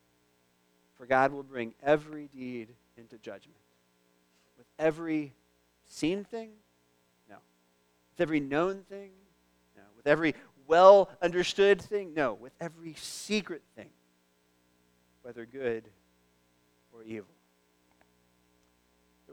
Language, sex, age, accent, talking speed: English, male, 40-59, American, 100 wpm